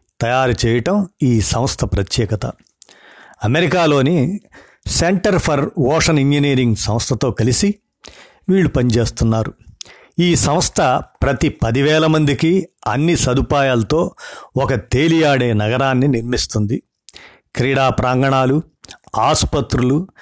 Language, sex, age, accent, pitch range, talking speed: Telugu, male, 50-69, native, 120-155 Hz, 85 wpm